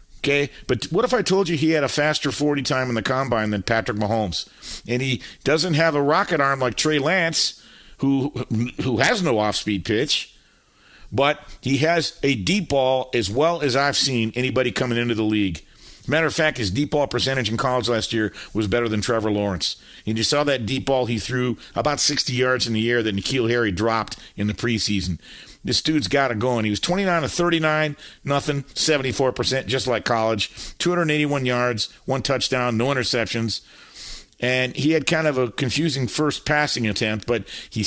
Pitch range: 115-150 Hz